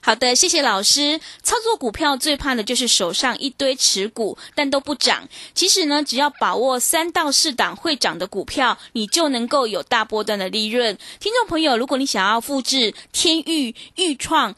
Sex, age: female, 20-39